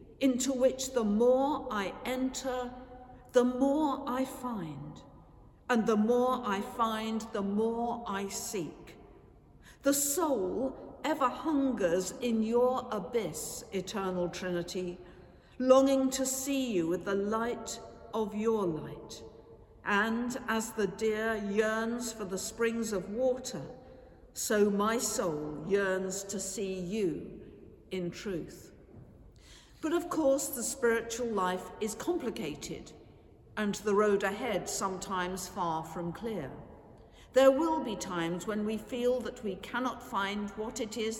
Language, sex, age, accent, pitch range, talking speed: English, female, 60-79, British, 195-245 Hz, 125 wpm